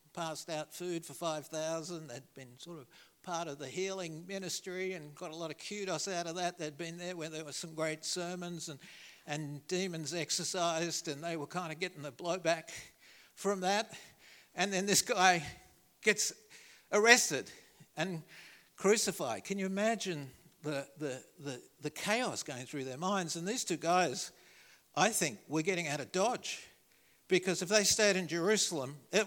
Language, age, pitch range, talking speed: English, 60-79, 145-185 Hz, 170 wpm